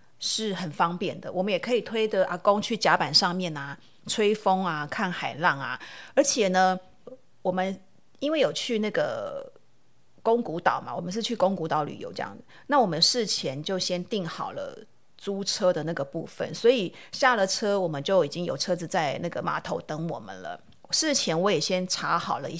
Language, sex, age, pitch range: Chinese, female, 30-49, 175-235 Hz